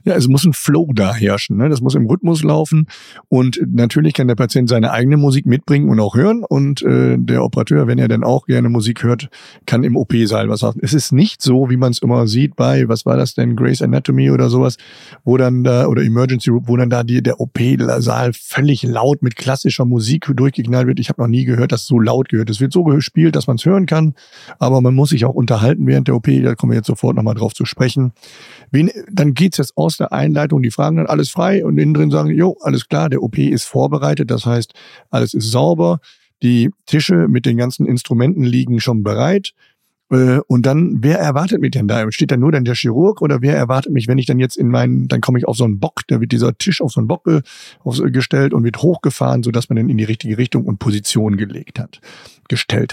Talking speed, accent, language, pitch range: 235 wpm, German, German, 120-145 Hz